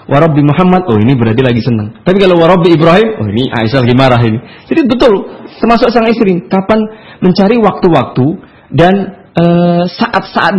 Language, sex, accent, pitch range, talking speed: Indonesian, male, native, 120-165 Hz, 160 wpm